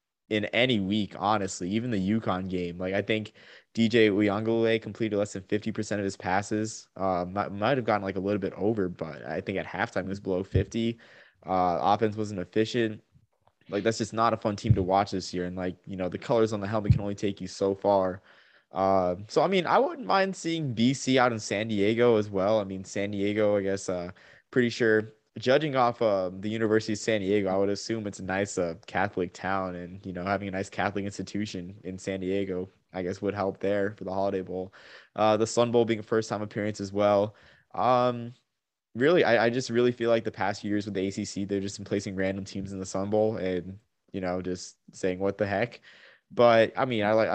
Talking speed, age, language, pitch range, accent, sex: 225 wpm, 20-39, English, 95-110 Hz, American, male